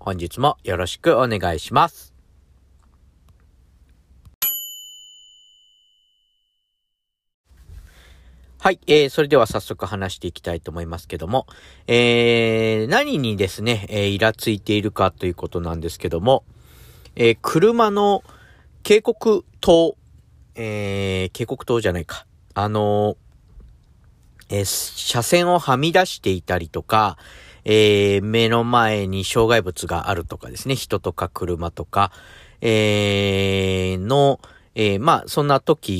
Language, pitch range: Japanese, 90-135 Hz